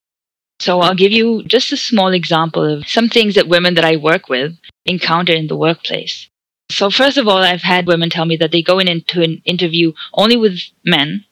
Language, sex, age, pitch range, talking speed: English, female, 20-39, 170-215 Hz, 205 wpm